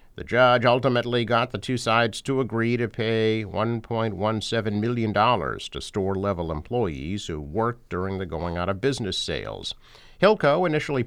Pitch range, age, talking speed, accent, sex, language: 100-135 Hz, 50-69, 130 wpm, American, male, English